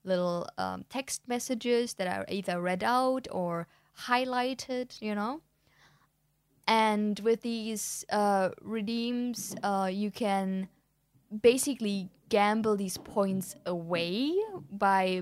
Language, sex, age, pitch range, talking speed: English, female, 10-29, 180-240 Hz, 105 wpm